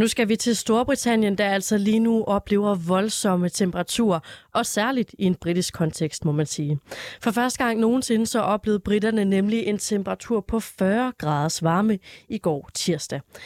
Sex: female